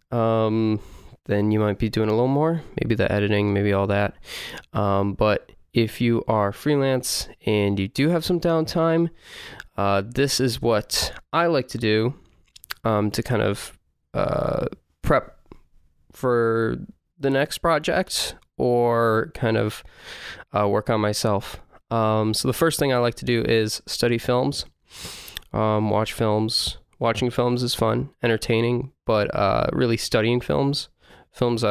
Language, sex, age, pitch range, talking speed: English, male, 20-39, 105-125 Hz, 150 wpm